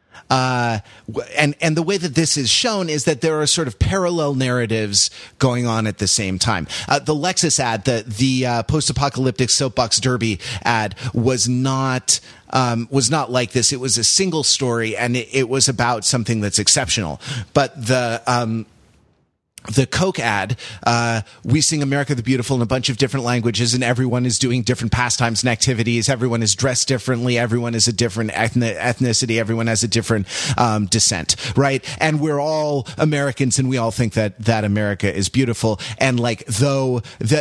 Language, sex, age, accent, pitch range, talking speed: English, male, 30-49, American, 115-140 Hz, 180 wpm